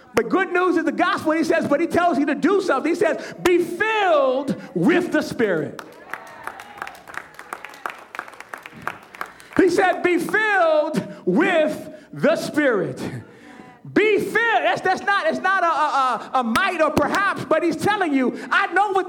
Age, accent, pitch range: 40-59, American, 290-370 Hz